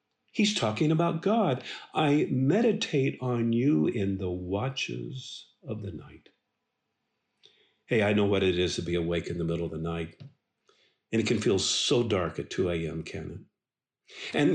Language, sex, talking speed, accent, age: English, male, 170 wpm, American, 50-69